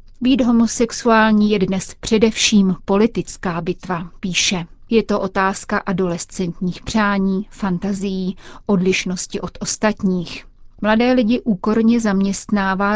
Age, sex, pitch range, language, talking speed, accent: 30-49, female, 185-210 Hz, Czech, 95 wpm, native